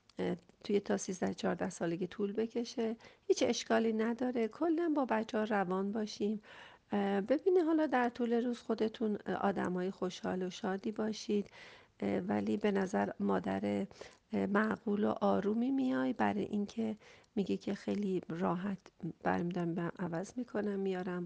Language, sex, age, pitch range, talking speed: Persian, female, 40-59, 185-240 Hz, 135 wpm